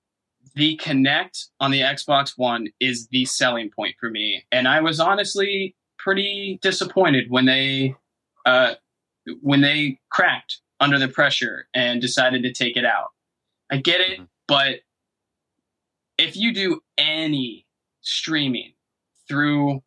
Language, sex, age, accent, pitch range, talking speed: English, male, 20-39, American, 125-150 Hz, 130 wpm